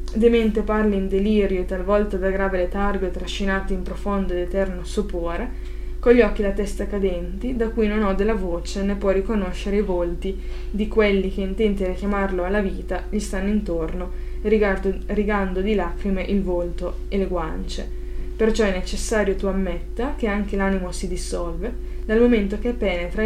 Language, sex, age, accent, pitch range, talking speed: Italian, female, 20-39, native, 180-205 Hz, 175 wpm